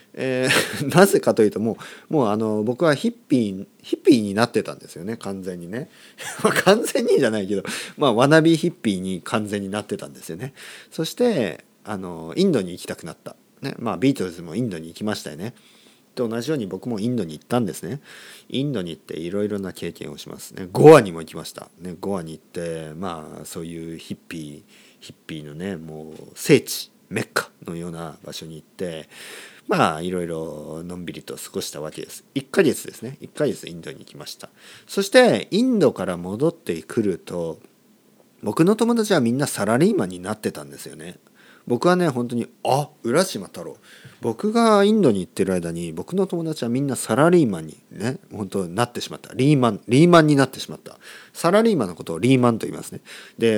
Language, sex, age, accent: Japanese, male, 40-59, native